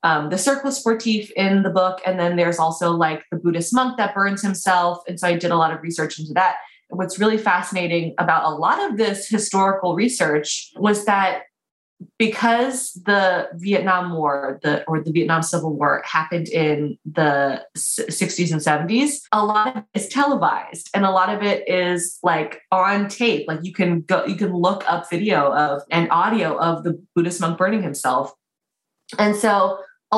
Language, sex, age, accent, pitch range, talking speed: English, female, 20-39, American, 170-210 Hz, 185 wpm